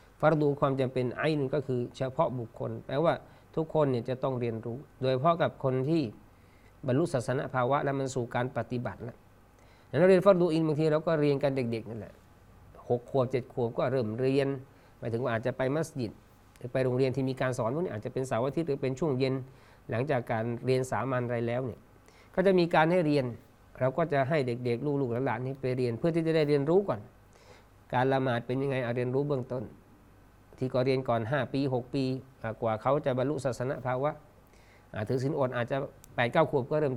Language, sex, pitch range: Thai, male, 115-145 Hz